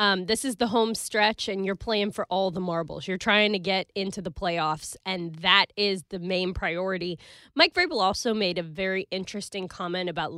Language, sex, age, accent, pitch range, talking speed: English, female, 20-39, American, 180-220 Hz, 200 wpm